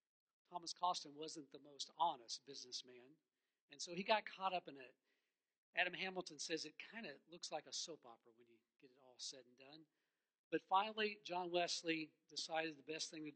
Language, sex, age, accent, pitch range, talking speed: English, male, 50-69, American, 145-195 Hz, 195 wpm